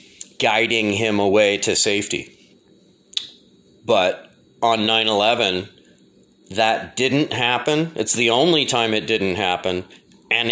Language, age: English, 30-49